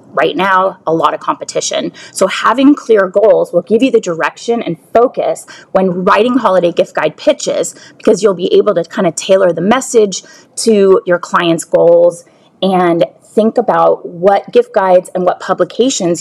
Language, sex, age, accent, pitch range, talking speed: English, female, 30-49, American, 175-230 Hz, 170 wpm